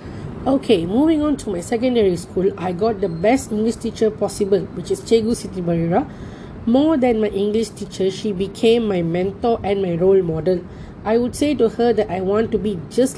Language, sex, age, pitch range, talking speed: English, female, 20-39, 195-230 Hz, 195 wpm